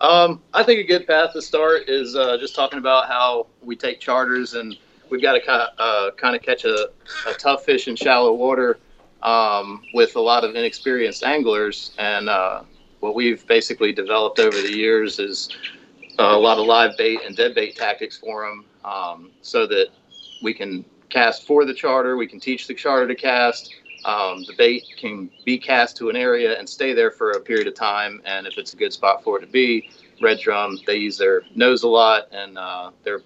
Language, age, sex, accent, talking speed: English, 40-59, male, American, 205 wpm